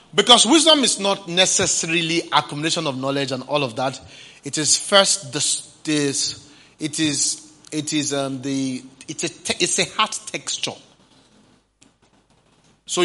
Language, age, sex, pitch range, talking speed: English, 30-49, male, 145-200 Hz, 140 wpm